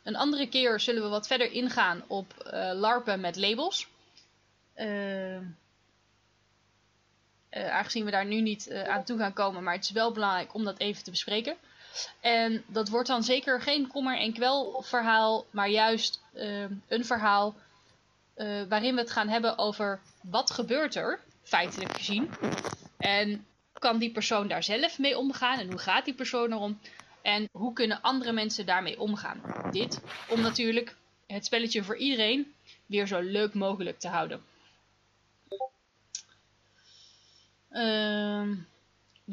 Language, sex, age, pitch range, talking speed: Dutch, female, 10-29, 195-240 Hz, 150 wpm